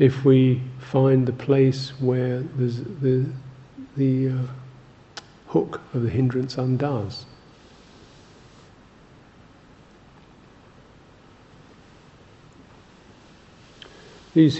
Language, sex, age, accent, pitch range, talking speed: English, male, 50-69, British, 100-125 Hz, 60 wpm